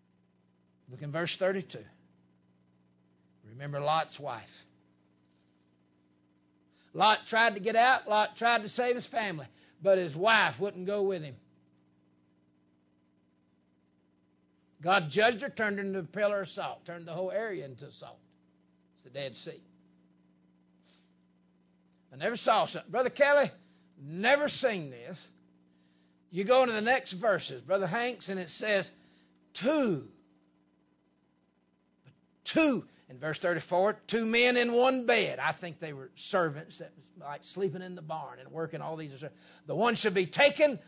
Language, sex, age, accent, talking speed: English, male, 60-79, American, 140 wpm